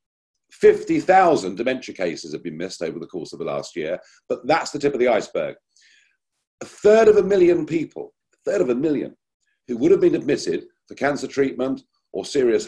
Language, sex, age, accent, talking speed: English, male, 50-69, British, 200 wpm